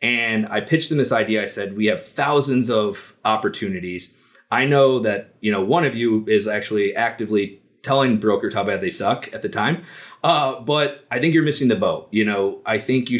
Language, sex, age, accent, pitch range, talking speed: English, male, 30-49, American, 105-130 Hz, 210 wpm